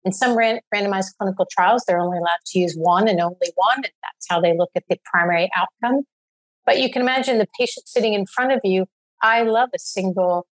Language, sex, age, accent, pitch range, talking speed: English, female, 50-69, American, 185-240 Hz, 215 wpm